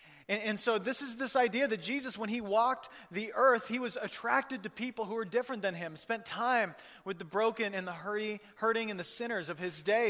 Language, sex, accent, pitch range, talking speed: English, male, American, 180-225 Hz, 220 wpm